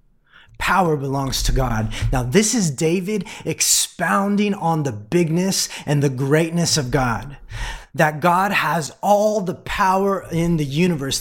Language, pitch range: English, 140-175 Hz